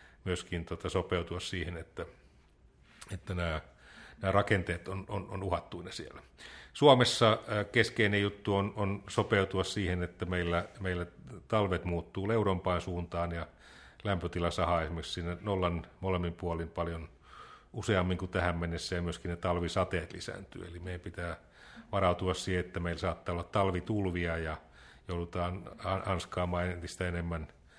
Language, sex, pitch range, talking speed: Finnish, male, 85-95 Hz, 130 wpm